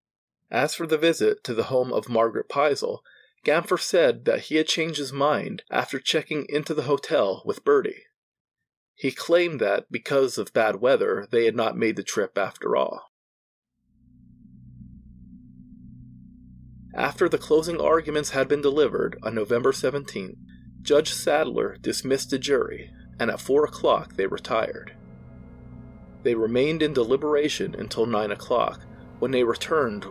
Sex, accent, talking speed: male, American, 140 wpm